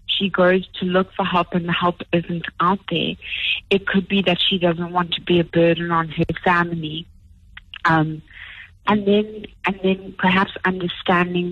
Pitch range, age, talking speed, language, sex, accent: 160-180 Hz, 30-49, 170 wpm, English, female, American